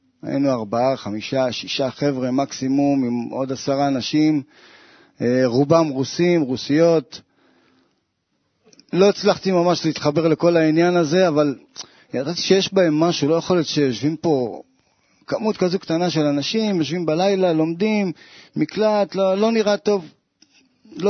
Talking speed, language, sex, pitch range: 125 wpm, Hebrew, male, 135-170 Hz